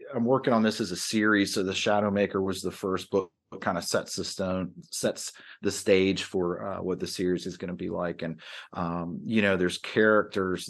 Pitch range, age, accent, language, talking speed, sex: 85-100 Hz, 30-49, American, English, 220 wpm, male